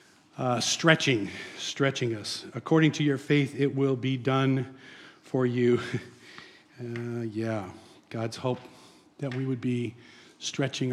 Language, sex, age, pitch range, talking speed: English, male, 50-69, 155-260 Hz, 125 wpm